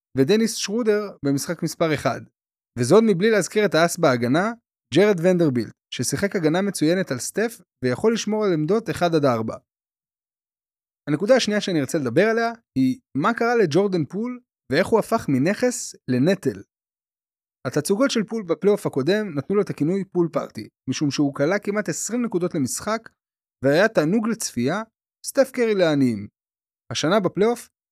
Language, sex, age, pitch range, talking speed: Hebrew, male, 20-39, 145-215 Hz, 145 wpm